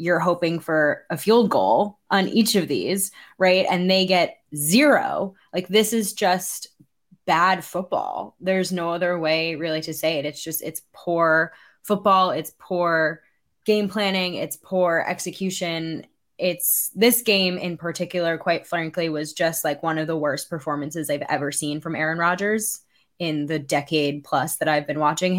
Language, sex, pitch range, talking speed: English, female, 160-195 Hz, 165 wpm